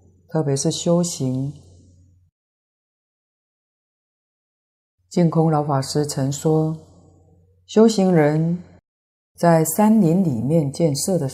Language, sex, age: Chinese, female, 30-49